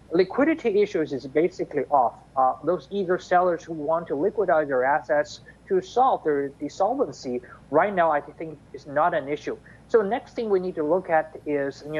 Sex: male